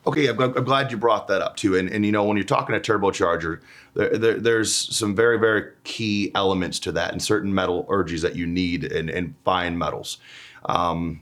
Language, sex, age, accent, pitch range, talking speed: English, male, 30-49, American, 95-115 Hz, 205 wpm